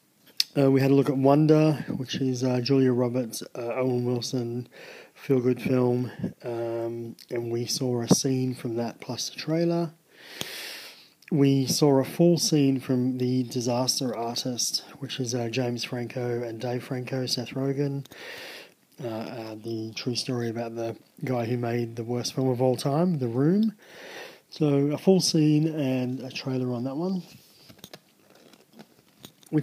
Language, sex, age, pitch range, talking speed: English, male, 20-39, 125-150 Hz, 155 wpm